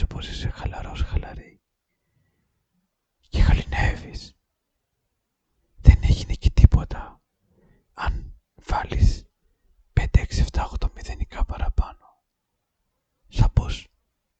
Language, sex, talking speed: Greek, male, 75 wpm